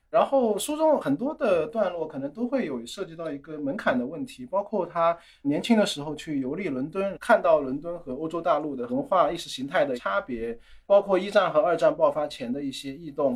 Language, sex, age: Chinese, male, 20-39